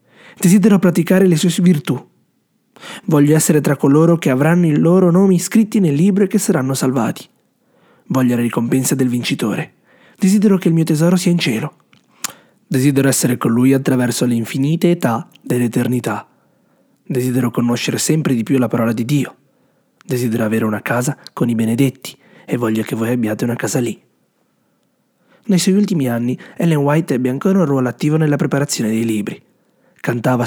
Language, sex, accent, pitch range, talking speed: Italian, male, native, 125-170 Hz, 165 wpm